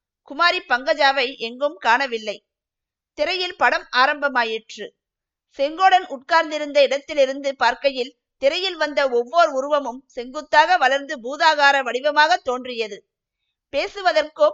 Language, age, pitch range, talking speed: Tamil, 50-69, 250-310 Hz, 85 wpm